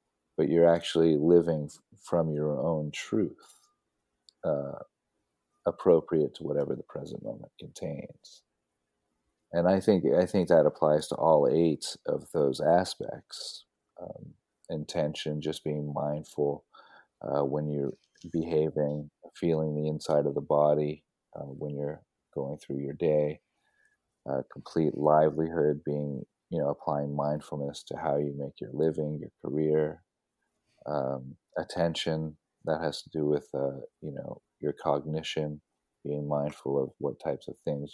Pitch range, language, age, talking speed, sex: 70-80 Hz, English, 40-59, 135 wpm, male